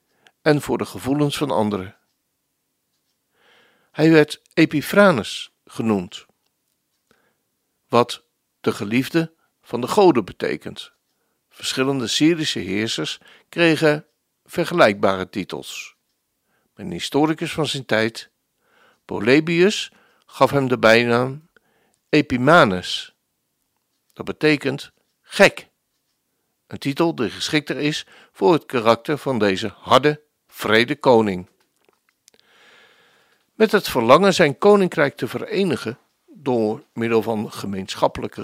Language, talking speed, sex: Dutch, 95 wpm, male